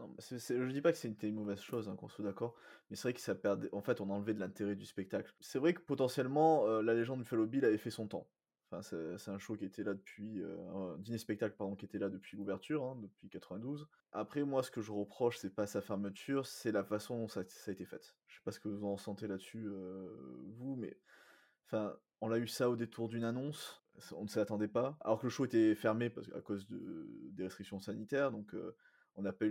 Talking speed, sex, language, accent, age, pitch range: 255 wpm, male, French, French, 20-39, 100-125 Hz